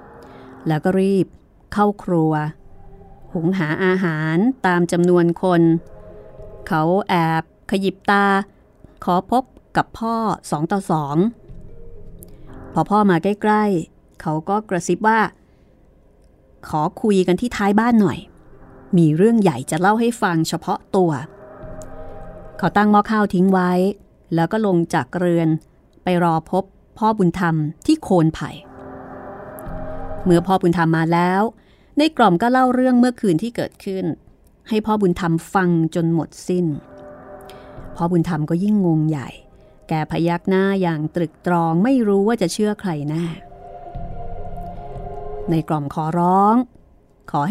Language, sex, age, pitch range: Thai, female, 30-49, 155-200 Hz